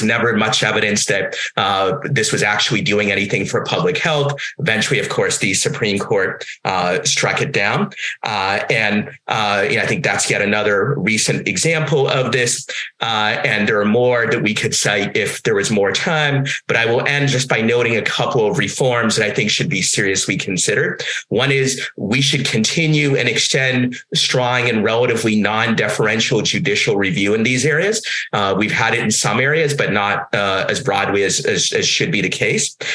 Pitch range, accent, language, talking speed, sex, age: 115-145 Hz, American, English, 185 wpm, male, 30-49